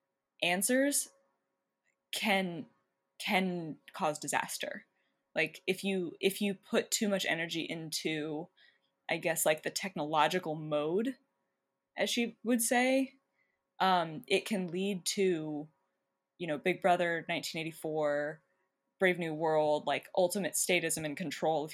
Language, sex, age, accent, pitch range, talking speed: English, female, 20-39, American, 155-195 Hz, 120 wpm